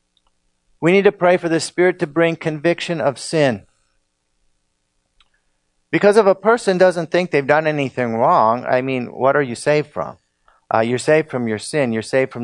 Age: 50-69